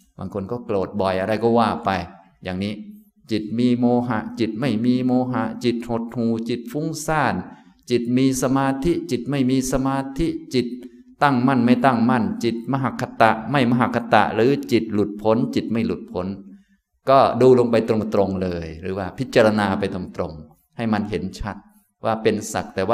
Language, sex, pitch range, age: Thai, male, 110-140 Hz, 20-39